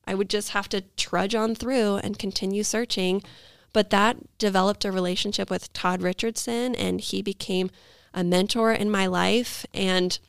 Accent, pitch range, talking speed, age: American, 180-210 Hz, 165 wpm, 20-39